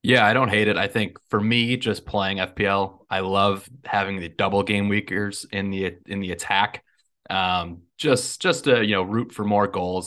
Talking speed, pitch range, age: 205 wpm, 95-115 Hz, 20-39